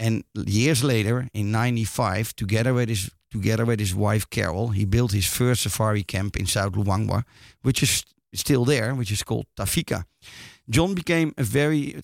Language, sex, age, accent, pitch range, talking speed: Dutch, male, 50-69, Dutch, 110-135 Hz, 175 wpm